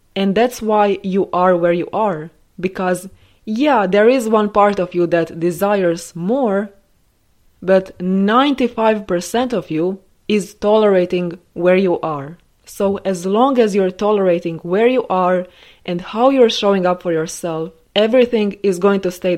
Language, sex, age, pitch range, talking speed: English, female, 20-39, 180-215 Hz, 150 wpm